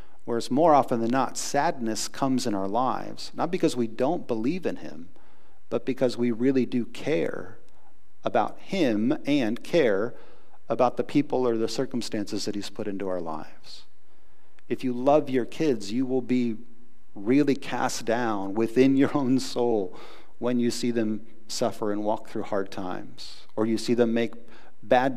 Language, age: English, 40-59